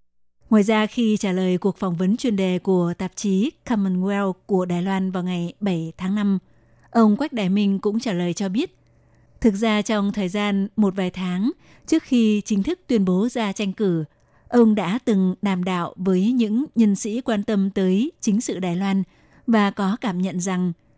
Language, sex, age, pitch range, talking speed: Vietnamese, female, 20-39, 190-220 Hz, 195 wpm